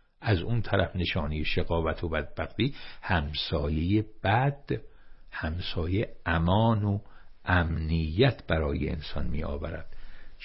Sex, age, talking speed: male, 60-79, 100 wpm